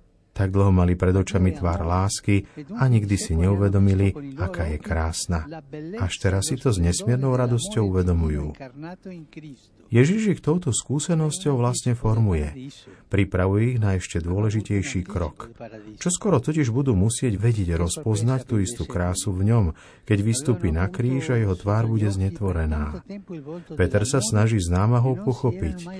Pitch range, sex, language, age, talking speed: 95-125 Hz, male, Slovak, 50-69, 140 wpm